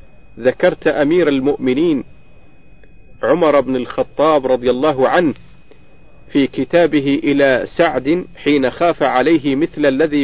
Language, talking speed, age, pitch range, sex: Arabic, 105 wpm, 50-69, 130-160 Hz, male